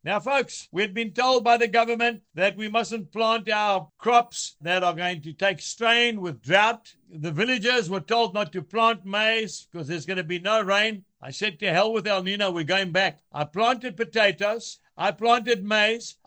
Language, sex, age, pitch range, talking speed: English, male, 60-79, 180-230 Hz, 200 wpm